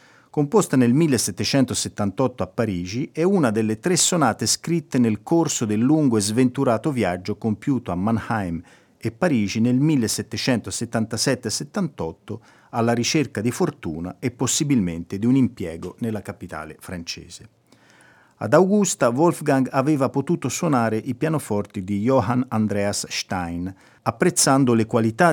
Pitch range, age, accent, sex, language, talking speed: 100-140 Hz, 40-59, native, male, Italian, 125 wpm